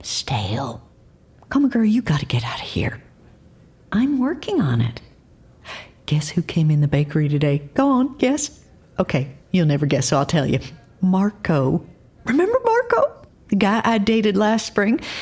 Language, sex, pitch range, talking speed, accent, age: English, female, 160-245 Hz, 160 wpm, American, 50-69